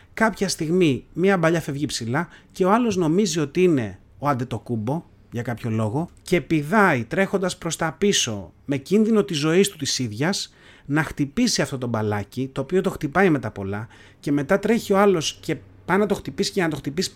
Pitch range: 130-195 Hz